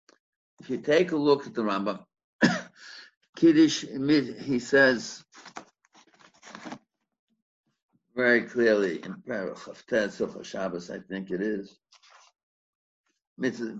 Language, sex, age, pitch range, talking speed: English, male, 60-79, 105-140 Hz, 60 wpm